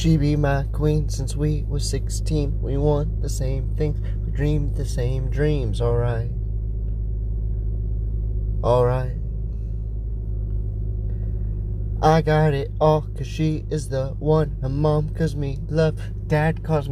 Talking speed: 130 wpm